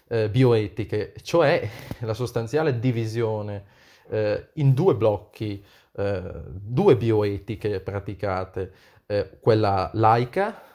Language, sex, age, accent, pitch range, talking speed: Italian, male, 30-49, native, 100-125 Hz, 90 wpm